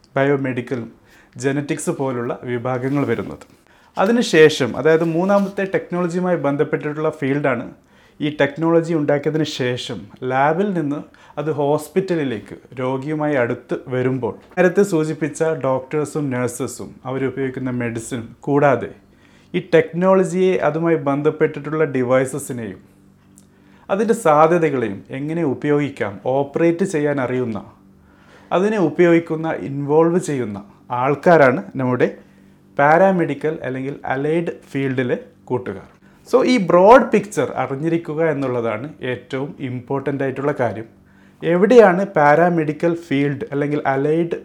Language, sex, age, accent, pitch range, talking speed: Malayalam, male, 30-49, native, 130-165 Hz, 90 wpm